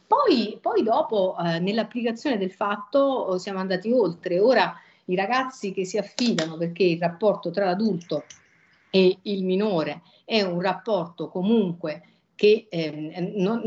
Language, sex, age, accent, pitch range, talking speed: Italian, female, 50-69, native, 170-215 Hz, 135 wpm